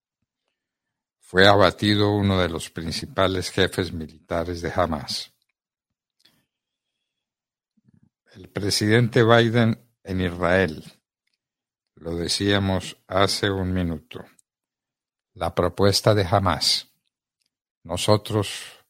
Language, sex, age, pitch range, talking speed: Spanish, male, 60-79, 90-100 Hz, 80 wpm